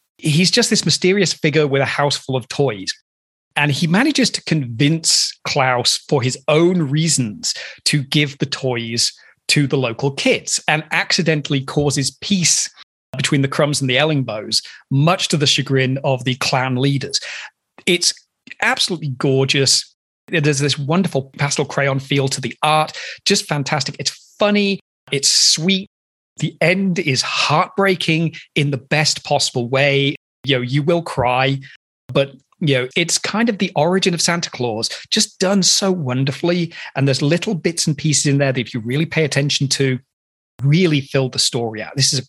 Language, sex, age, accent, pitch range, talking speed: English, male, 30-49, British, 135-175 Hz, 165 wpm